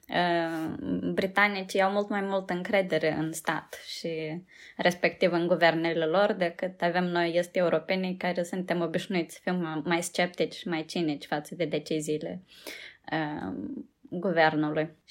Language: Romanian